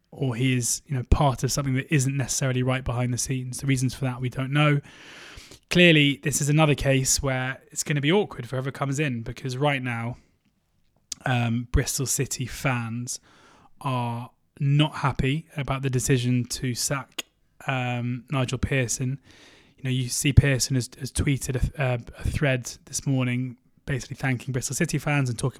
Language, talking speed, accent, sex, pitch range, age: English, 180 wpm, British, male, 125-145 Hz, 20-39